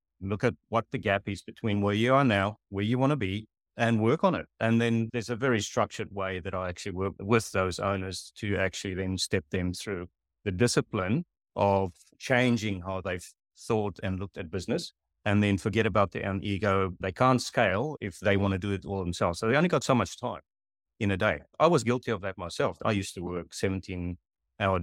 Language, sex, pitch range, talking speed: English, male, 95-120 Hz, 220 wpm